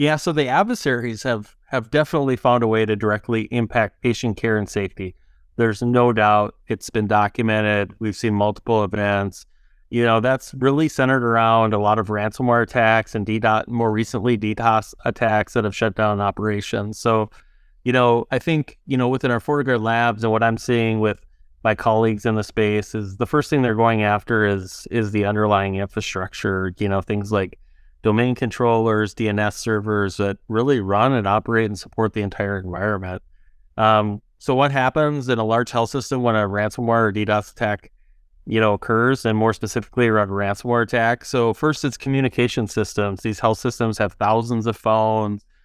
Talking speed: 180 wpm